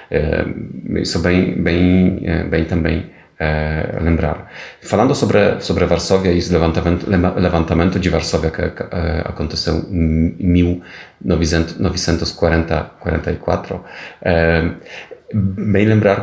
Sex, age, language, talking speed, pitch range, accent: male, 30-49, Portuguese, 100 wpm, 85-95 Hz, Polish